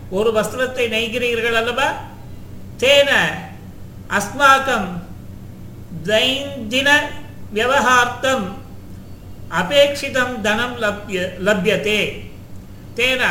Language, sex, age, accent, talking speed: Tamil, male, 50-69, native, 45 wpm